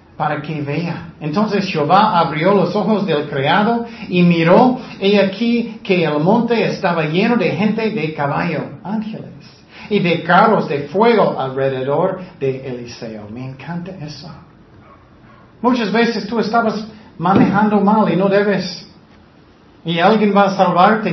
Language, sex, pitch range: Spanish, male, 145-205 Hz